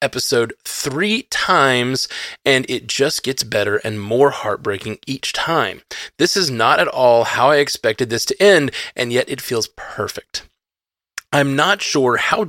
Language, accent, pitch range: English, American, 120-165 Hz